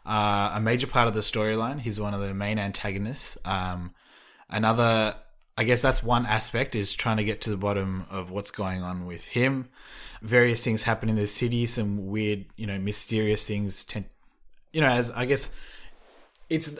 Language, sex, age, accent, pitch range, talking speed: English, male, 20-39, Australian, 100-115 Hz, 180 wpm